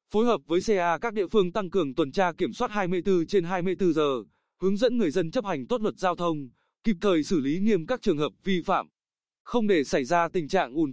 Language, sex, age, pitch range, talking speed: Vietnamese, male, 20-39, 160-205 Hz, 240 wpm